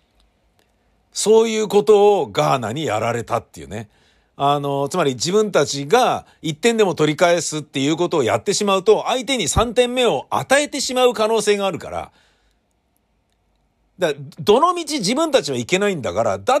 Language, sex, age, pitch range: Japanese, male, 50-69, 135-200 Hz